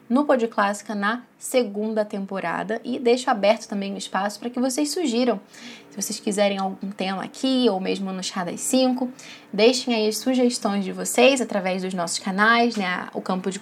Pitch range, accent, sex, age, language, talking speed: 195-255 Hz, Brazilian, female, 10-29, Portuguese, 185 wpm